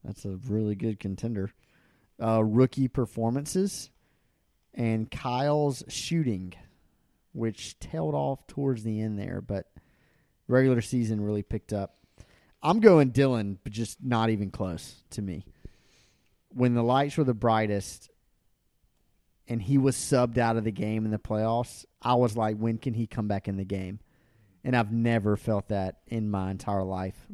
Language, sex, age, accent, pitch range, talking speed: English, male, 30-49, American, 105-125 Hz, 155 wpm